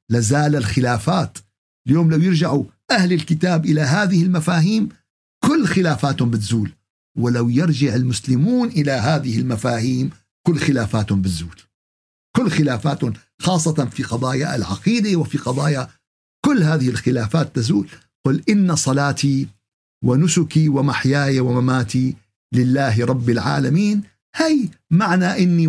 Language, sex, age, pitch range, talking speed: Arabic, male, 50-69, 125-185 Hz, 105 wpm